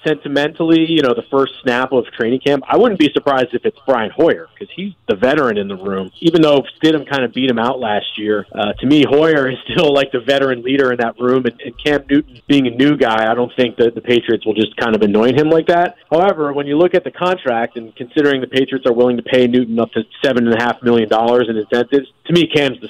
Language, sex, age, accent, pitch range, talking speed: English, male, 40-59, American, 125-155 Hz, 250 wpm